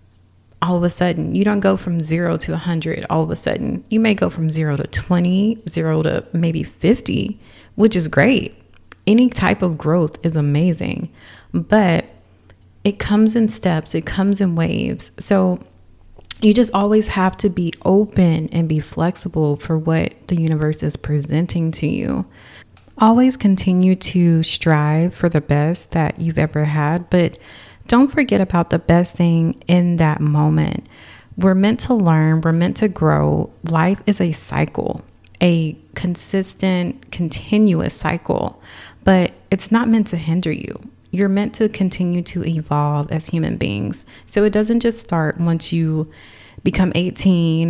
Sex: female